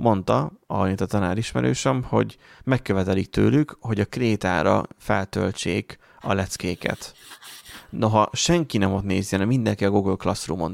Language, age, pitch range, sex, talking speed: Hungarian, 30-49, 95-120 Hz, male, 140 wpm